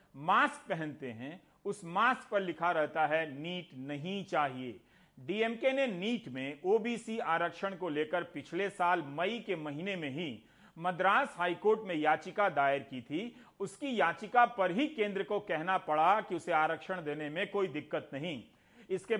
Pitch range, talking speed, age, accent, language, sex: 170-220 Hz, 160 wpm, 40-59, native, Hindi, male